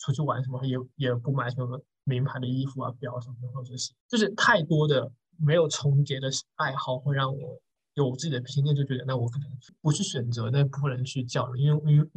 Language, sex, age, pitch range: Chinese, male, 20-39, 130-155 Hz